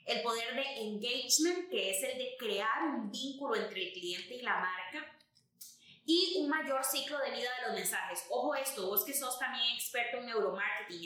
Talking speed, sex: 190 wpm, female